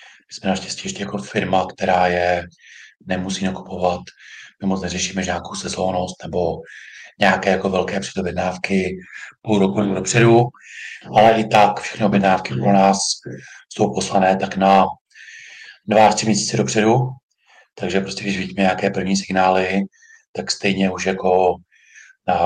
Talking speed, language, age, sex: 130 wpm, Czech, 40-59, male